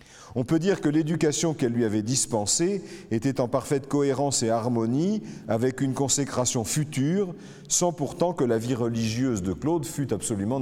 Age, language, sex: 40-59, French, male